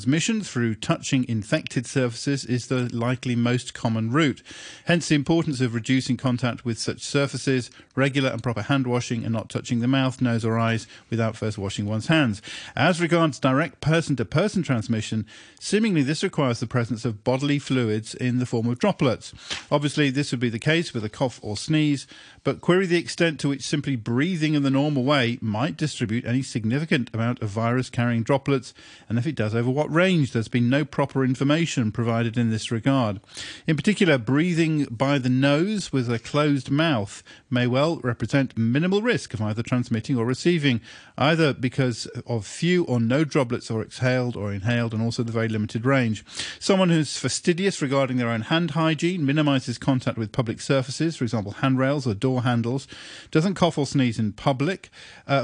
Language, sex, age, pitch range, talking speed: English, male, 50-69, 115-150 Hz, 180 wpm